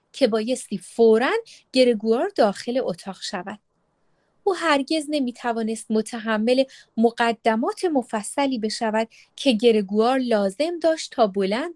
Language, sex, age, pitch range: Persian, female, 30-49, 220-300 Hz